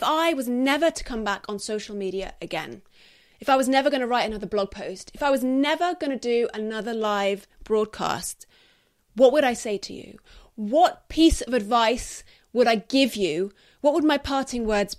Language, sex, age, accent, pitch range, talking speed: English, female, 30-49, British, 220-295 Hz, 200 wpm